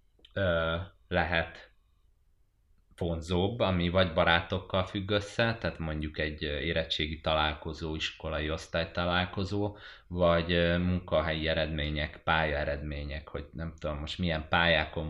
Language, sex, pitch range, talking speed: Hungarian, male, 80-90 Hz, 105 wpm